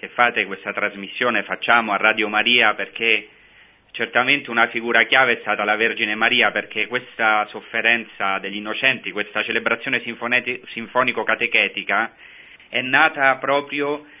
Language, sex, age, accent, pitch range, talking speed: Italian, male, 30-49, native, 110-135 Hz, 125 wpm